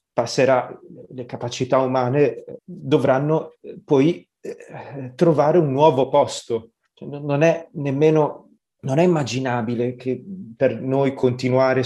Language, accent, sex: Italian, native, male